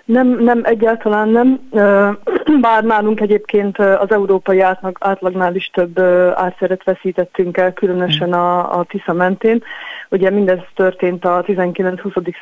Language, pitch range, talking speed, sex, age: Hungarian, 175-195 Hz, 125 wpm, female, 30-49